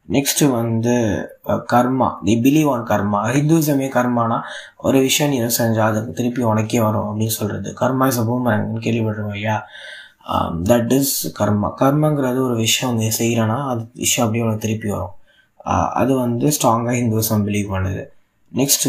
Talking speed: 140 wpm